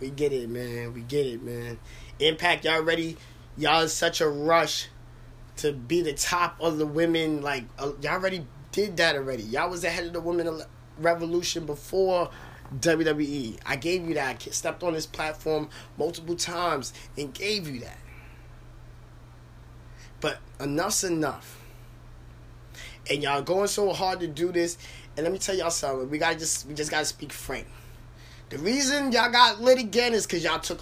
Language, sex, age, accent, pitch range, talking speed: English, male, 20-39, American, 130-195 Hz, 170 wpm